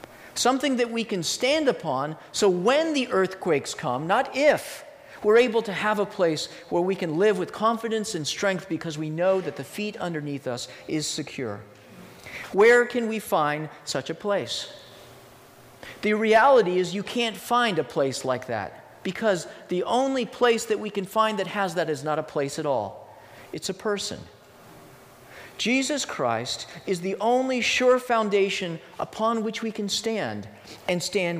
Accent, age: American, 40-59